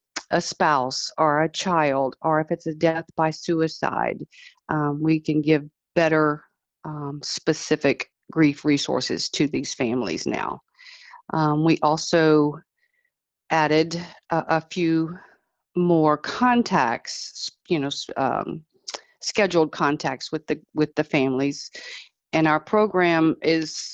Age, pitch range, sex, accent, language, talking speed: 50-69, 150-175 Hz, female, American, English, 120 wpm